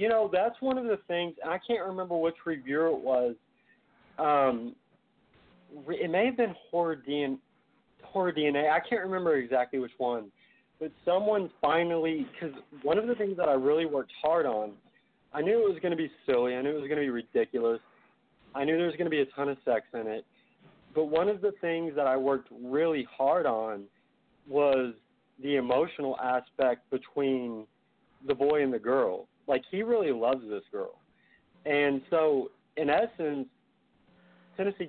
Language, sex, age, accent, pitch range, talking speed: English, male, 40-59, American, 130-170 Hz, 180 wpm